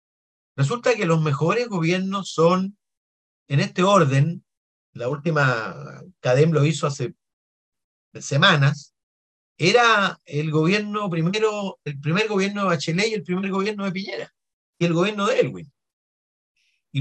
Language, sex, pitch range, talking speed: Spanish, male, 135-195 Hz, 130 wpm